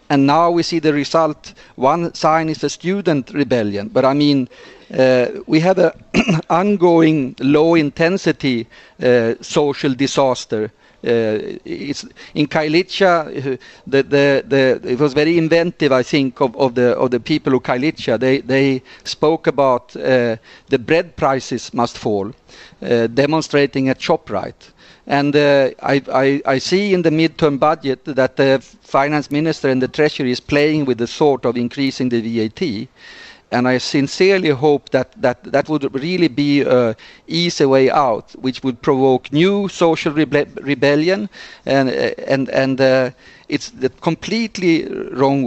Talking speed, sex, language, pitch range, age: 150 wpm, male, English, 130-160 Hz, 40-59